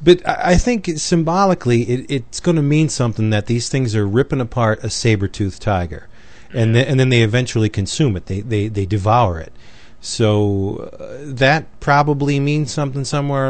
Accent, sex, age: American, male, 40-59